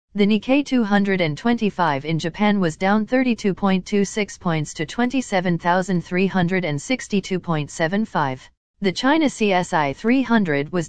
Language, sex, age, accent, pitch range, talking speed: English, female, 40-59, American, 170-230 Hz, 90 wpm